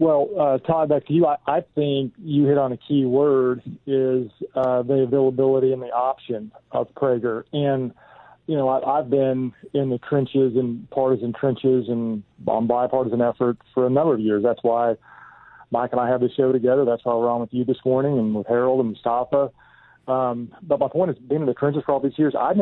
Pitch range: 125-140 Hz